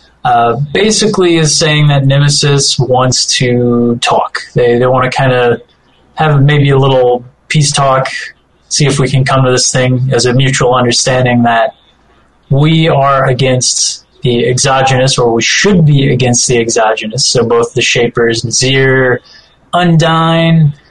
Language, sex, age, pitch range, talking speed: English, male, 20-39, 125-150 Hz, 150 wpm